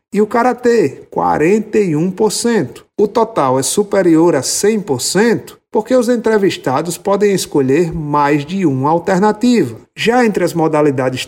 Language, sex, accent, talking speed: Portuguese, male, Brazilian, 120 wpm